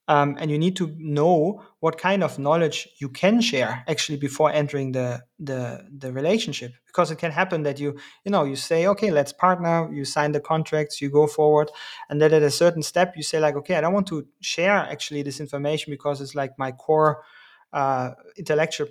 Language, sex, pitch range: English, male, 145-170 Hz